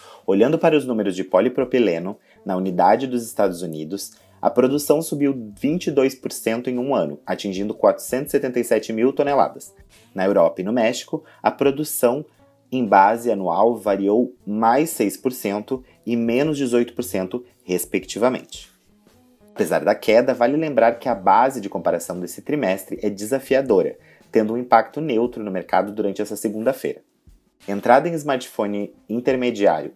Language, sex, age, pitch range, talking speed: Portuguese, male, 30-49, 100-135 Hz, 130 wpm